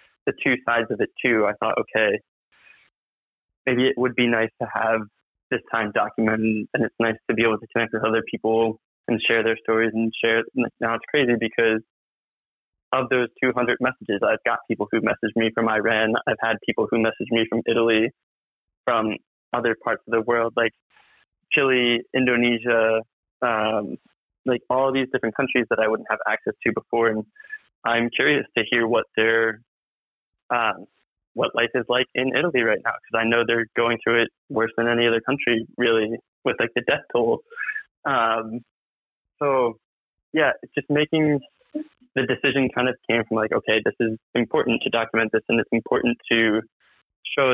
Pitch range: 115-125 Hz